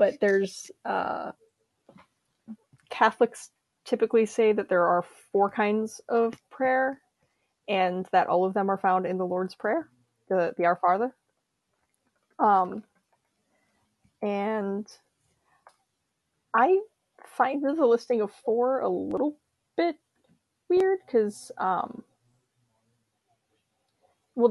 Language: English